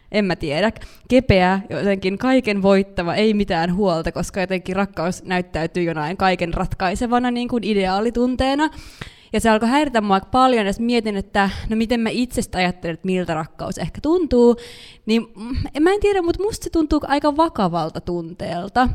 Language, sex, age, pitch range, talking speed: Finnish, female, 20-39, 185-240 Hz, 160 wpm